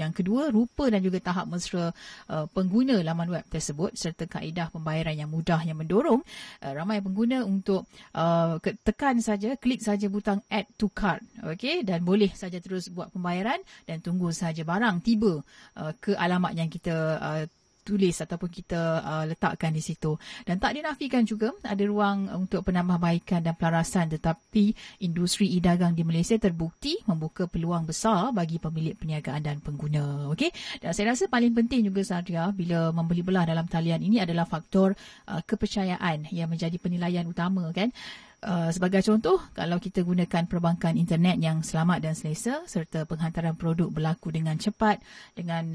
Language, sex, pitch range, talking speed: Malay, female, 165-210 Hz, 160 wpm